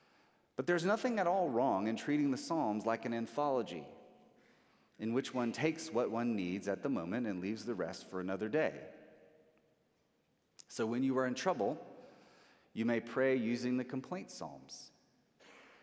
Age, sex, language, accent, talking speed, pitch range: 30-49, male, English, American, 165 wpm, 105-140 Hz